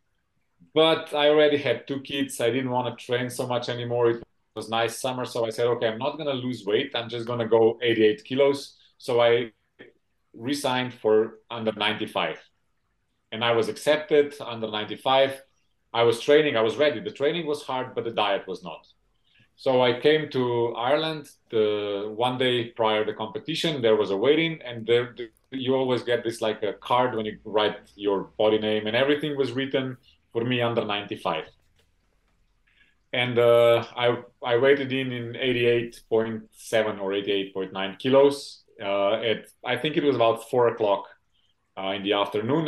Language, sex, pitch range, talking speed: English, male, 110-135 Hz, 175 wpm